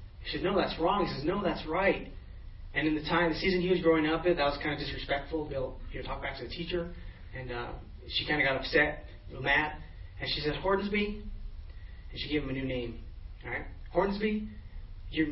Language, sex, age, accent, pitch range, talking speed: English, male, 30-49, American, 100-160 Hz, 225 wpm